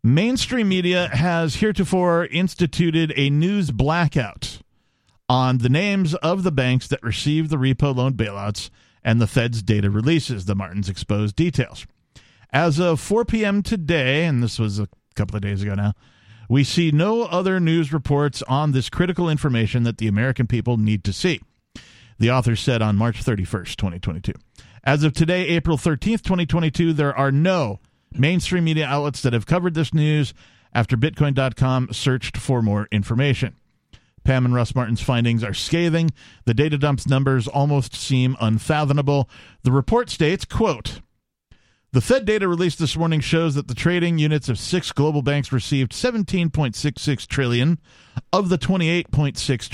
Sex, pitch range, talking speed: male, 115-165 Hz, 155 wpm